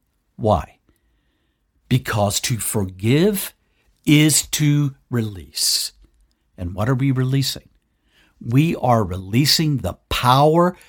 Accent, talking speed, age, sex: American, 95 wpm, 60-79, male